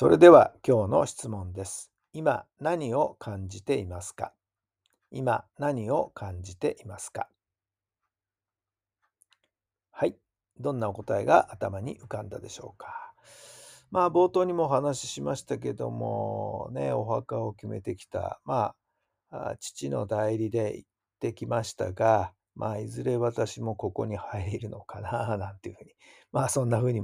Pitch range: 100-135 Hz